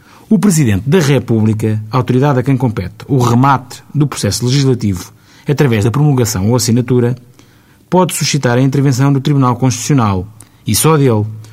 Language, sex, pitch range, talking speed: Portuguese, male, 110-145 Hz, 145 wpm